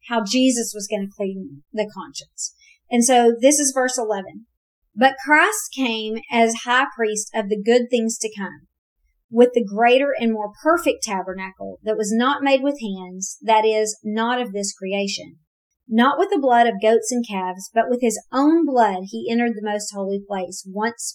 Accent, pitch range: American, 210-265 Hz